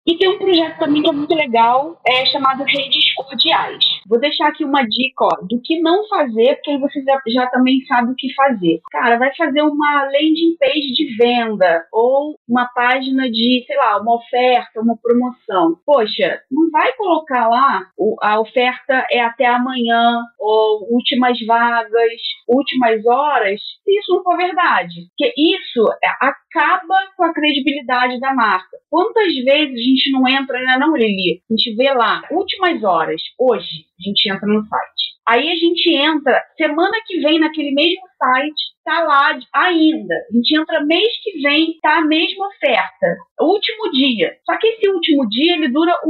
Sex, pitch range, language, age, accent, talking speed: female, 240-330 Hz, Portuguese, 20-39, Brazilian, 180 wpm